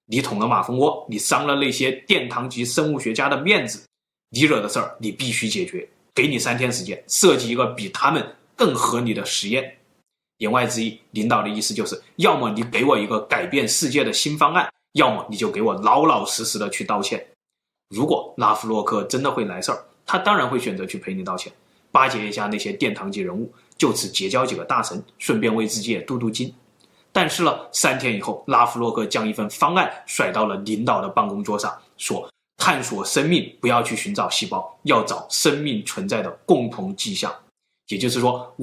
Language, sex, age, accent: Chinese, male, 20-39, native